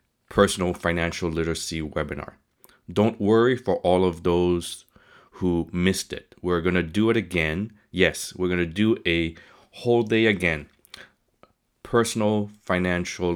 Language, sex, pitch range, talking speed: English, male, 85-100 Hz, 135 wpm